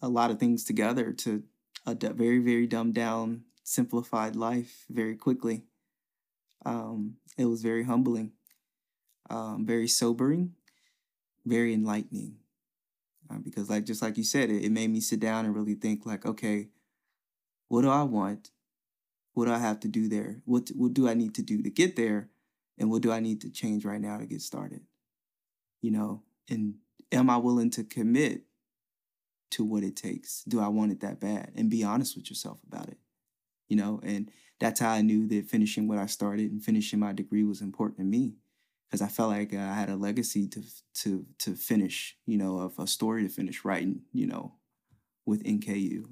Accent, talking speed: American, 190 wpm